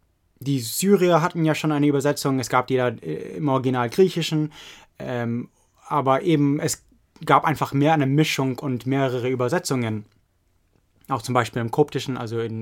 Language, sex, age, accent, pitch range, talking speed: English, male, 20-39, German, 125-150 Hz, 155 wpm